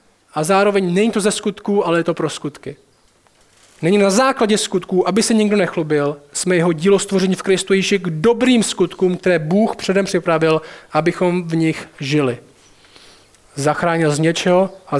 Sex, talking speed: male, 165 wpm